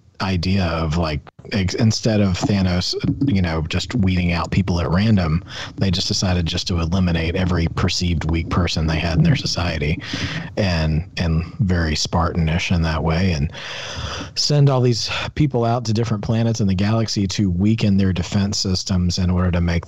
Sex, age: male, 40-59